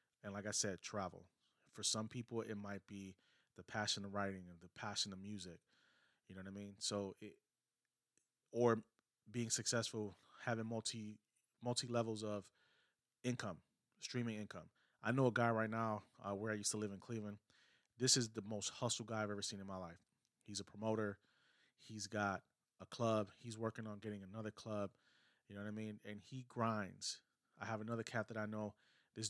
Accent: American